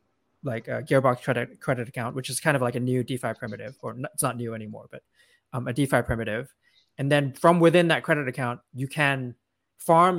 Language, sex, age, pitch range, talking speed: English, male, 20-39, 125-150 Hz, 205 wpm